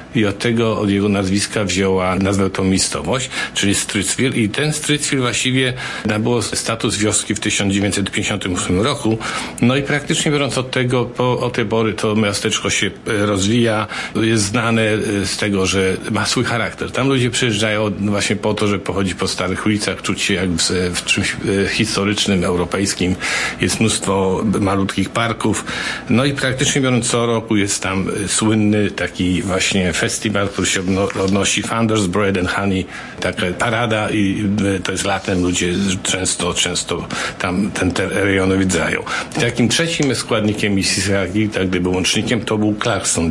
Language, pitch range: Polish, 95-115 Hz